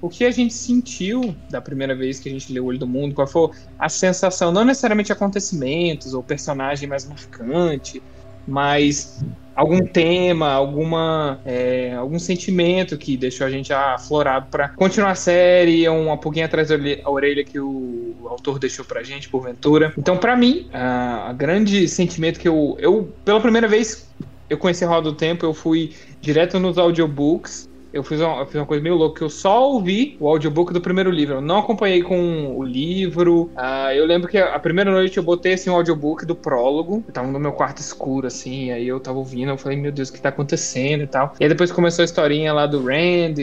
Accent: Brazilian